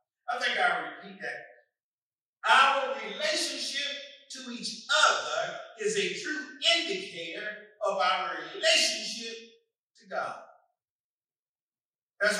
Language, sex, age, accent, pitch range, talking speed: English, male, 40-59, American, 205-320 Hz, 95 wpm